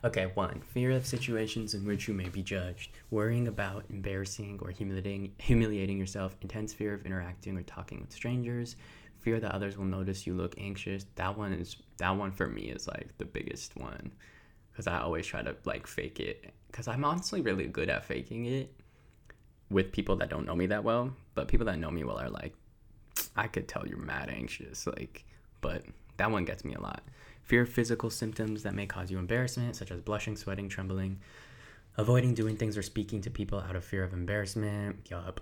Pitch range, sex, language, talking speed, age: 95-120 Hz, male, English, 200 wpm, 20-39